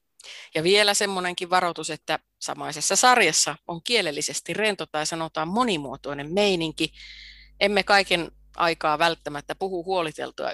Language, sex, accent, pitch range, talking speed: Finnish, female, native, 155-210 Hz, 115 wpm